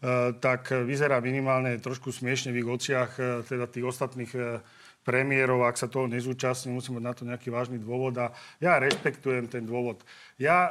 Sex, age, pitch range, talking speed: male, 40-59, 130-150 Hz, 155 wpm